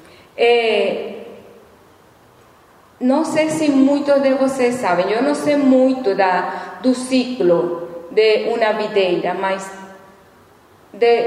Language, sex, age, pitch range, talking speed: Portuguese, female, 40-59, 215-270 Hz, 105 wpm